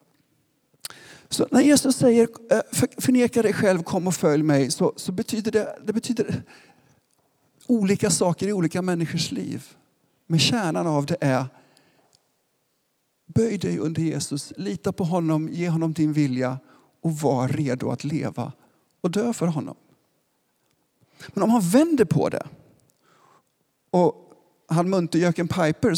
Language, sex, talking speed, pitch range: Swedish, male, 135 wpm, 145-195 Hz